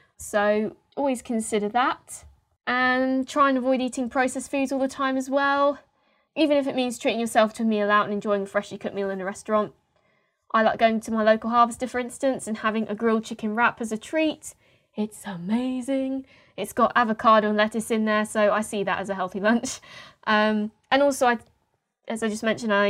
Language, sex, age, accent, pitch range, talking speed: English, female, 10-29, British, 205-250 Hz, 205 wpm